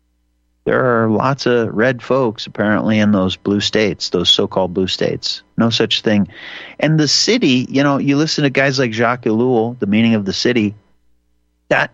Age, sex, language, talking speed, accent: 40-59, male, English, 180 wpm, American